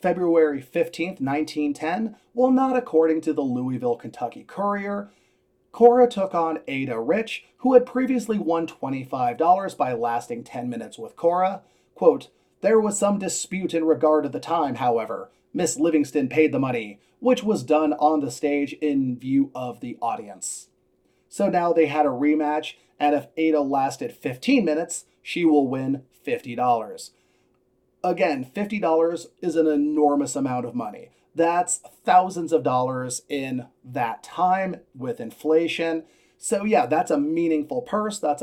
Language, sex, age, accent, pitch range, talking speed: English, male, 30-49, American, 140-190 Hz, 150 wpm